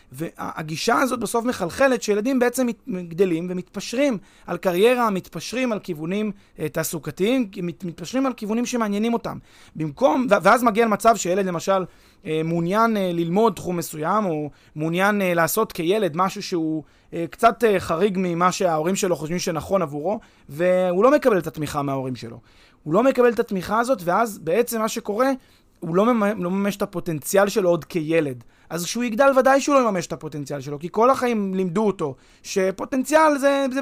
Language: Hebrew